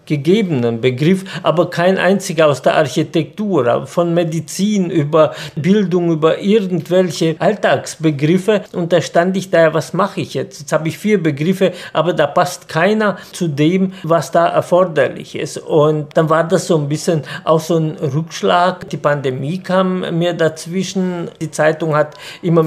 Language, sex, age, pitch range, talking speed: German, male, 50-69, 155-180 Hz, 155 wpm